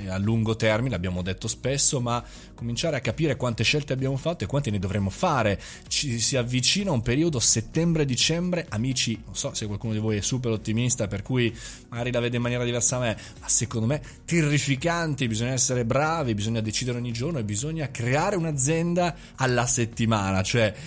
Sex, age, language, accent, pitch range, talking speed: male, 20-39, Italian, native, 110-160 Hz, 180 wpm